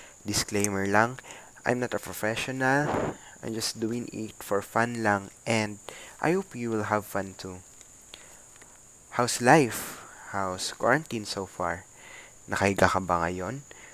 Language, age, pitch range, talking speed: Filipino, 20-39, 100-130 Hz, 135 wpm